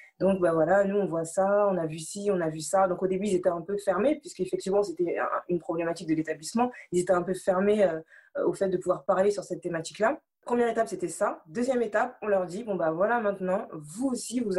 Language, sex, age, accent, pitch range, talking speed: French, female, 20-39, French, 180-220 Hz, 240 wpm